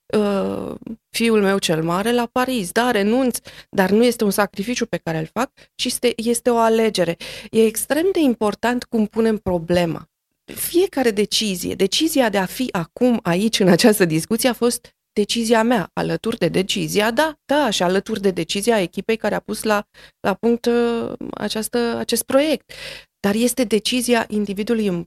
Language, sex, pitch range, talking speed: Romanian, female, 185-235 Hz, 160 wpm